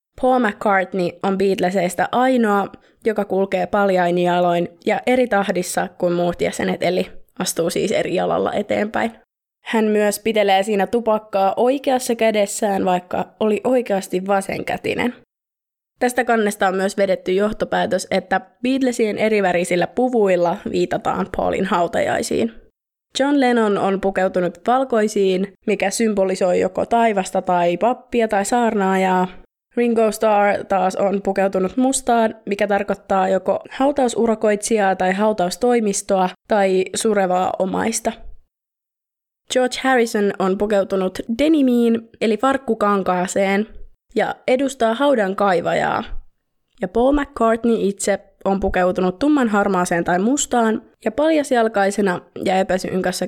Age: 20-39